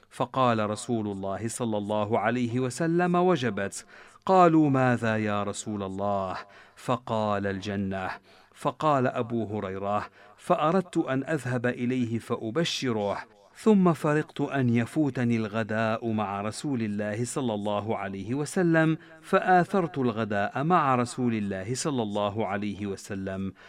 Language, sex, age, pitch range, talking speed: Arabic, male, 50-69, 105-135 Hz, 110 wpm